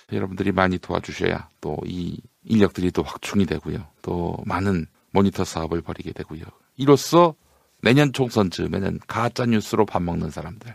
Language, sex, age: English, male, 50-69